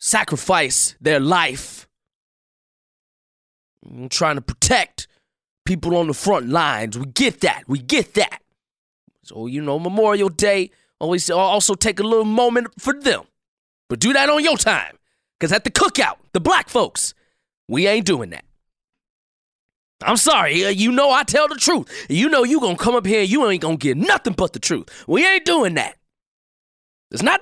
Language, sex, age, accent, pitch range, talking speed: English, male, 20-39, American, 185-295 Hz, 175 wpm